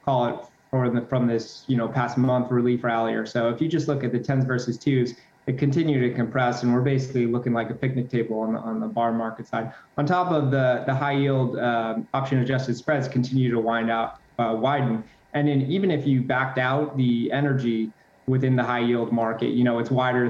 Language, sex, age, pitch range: English, male, 20-39, 120-140 Hz